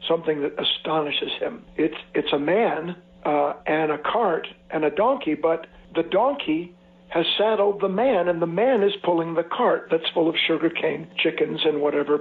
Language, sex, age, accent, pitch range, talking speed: English, male, 60-79, American, 160-205 Hz, 180 wpm